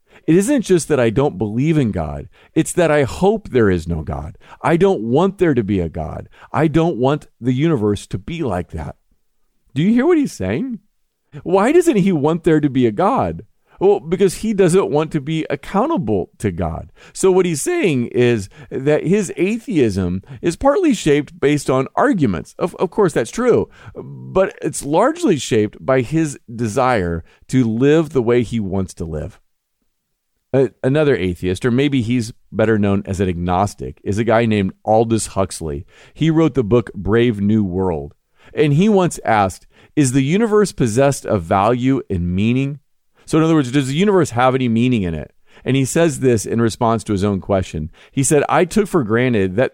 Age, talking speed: 40-59, 190 wpm